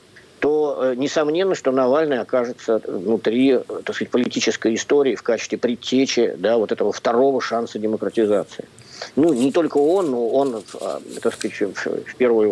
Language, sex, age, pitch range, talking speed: Russian, male, 50-69, 120-170 Hz, 135 wpm